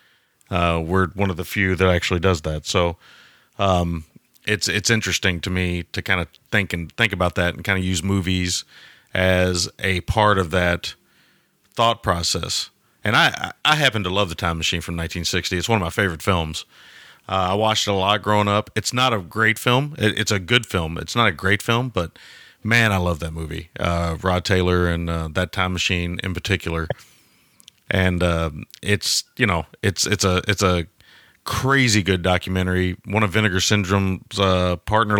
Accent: American